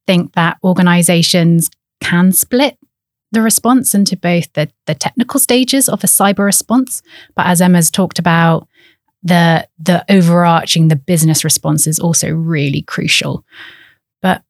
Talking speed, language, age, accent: 135 wpm, English, 30-49, British